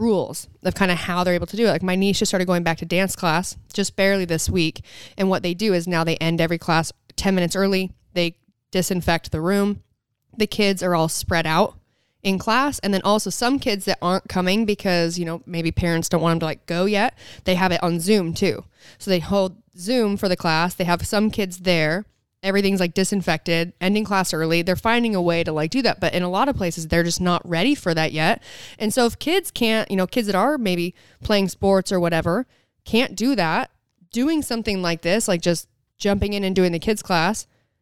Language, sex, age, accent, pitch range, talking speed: English, female, 20-39, American, 170-205 Hz, 230 wpm